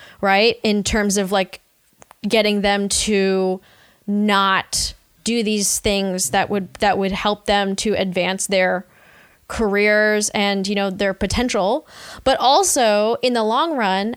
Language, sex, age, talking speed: English, female, 10-29, 140 wpm